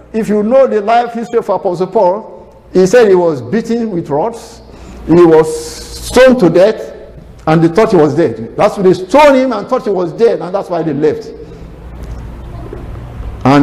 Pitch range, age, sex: 130-195 Hz, 50-69, male